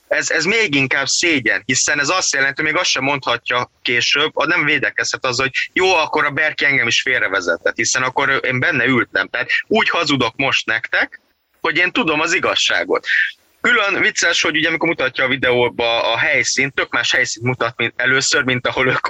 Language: Hungarian